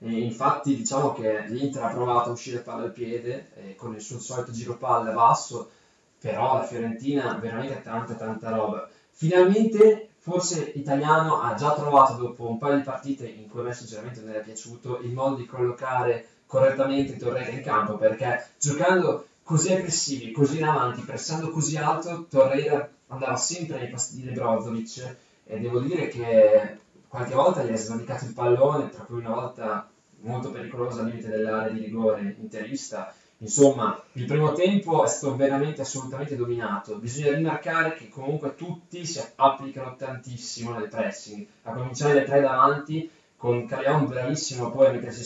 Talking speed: 165 wpm